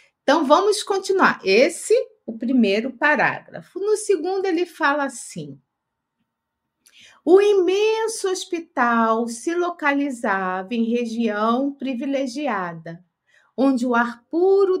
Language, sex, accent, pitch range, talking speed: Portuguese, female, Brazilian, 225-320 Hz, 100 wpm